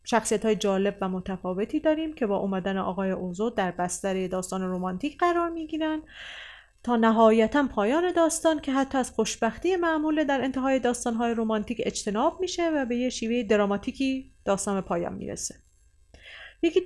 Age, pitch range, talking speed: 30-49, 200-295 Hz, 150 wpm